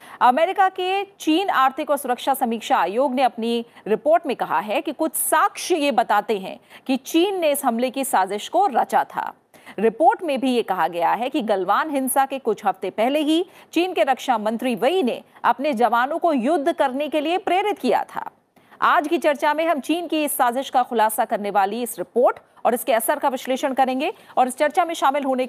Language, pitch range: Hindi, 235-310 Hz